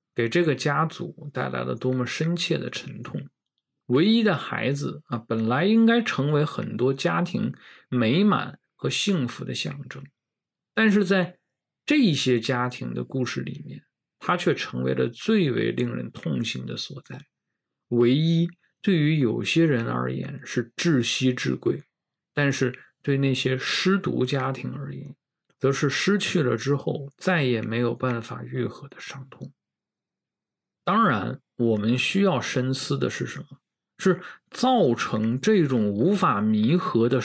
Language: Chinese